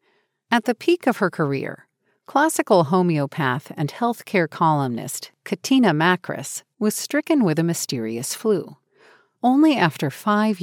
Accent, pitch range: American, 140-215 Hz